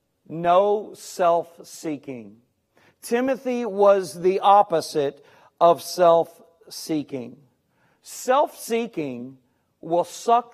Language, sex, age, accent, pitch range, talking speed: English, male, 40-59, American, 155-210 Hz, 80 wpm